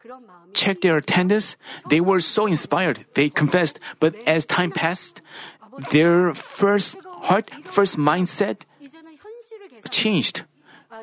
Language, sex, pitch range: Korean, male, 165-210 Hz